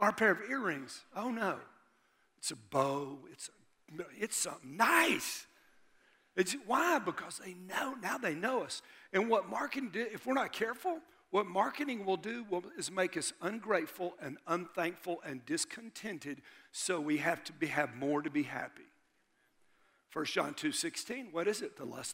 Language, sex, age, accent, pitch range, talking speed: English, male, 50-69, American, 165-250 Hz, 170 wpm